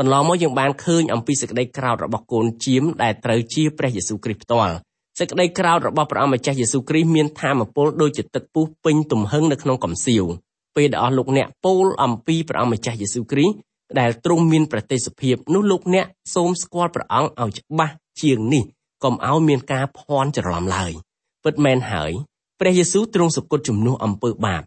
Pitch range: 120-155 Hz